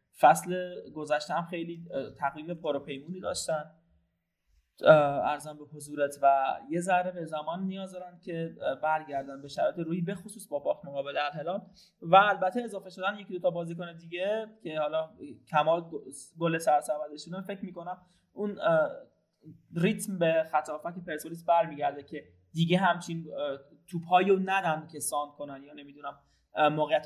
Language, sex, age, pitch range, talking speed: Persian, male, 20-39, 150-185 Hz, 145 wpm